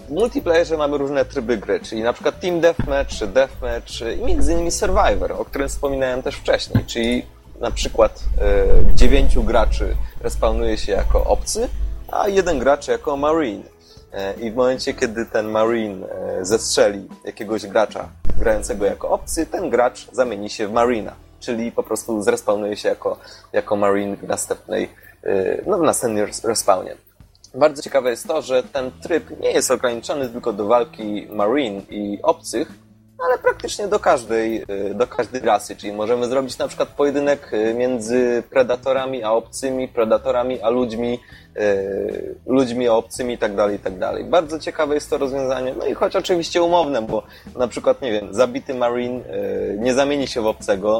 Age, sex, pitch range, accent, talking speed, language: 20-39, male, 110-165 Hz, native, 160 wpm, Polish